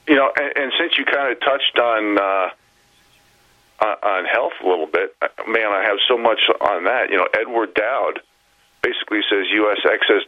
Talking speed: 180 wpm